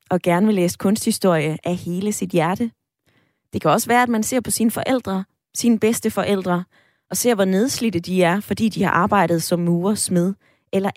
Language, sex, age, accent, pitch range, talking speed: Danish, female, 20-39, native, 165-220 Hz, 195 wpm